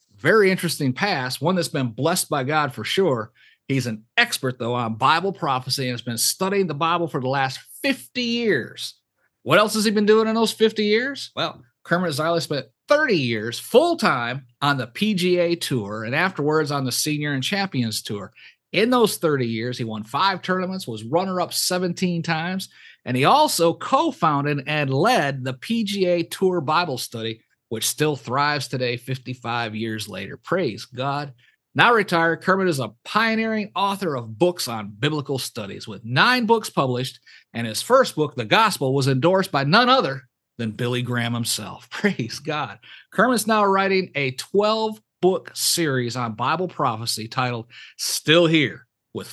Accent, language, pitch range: American, English, 125-185 Hz